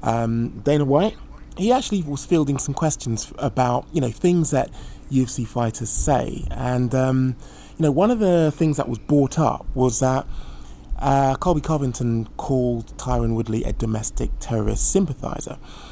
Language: English